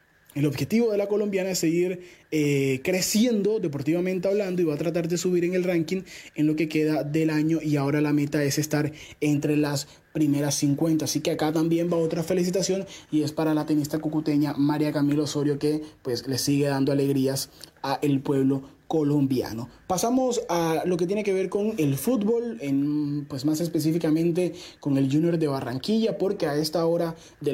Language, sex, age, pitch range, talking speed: Spanish, male, 20-39, 150-175 Hz, 185 wpm